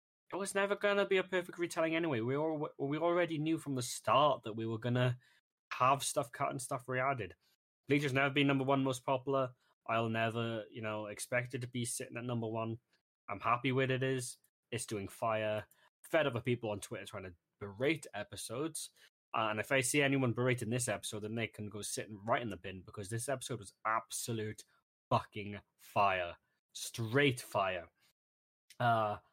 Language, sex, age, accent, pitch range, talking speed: English, male, 10-29, British, 110-135 Hz, 185 wpm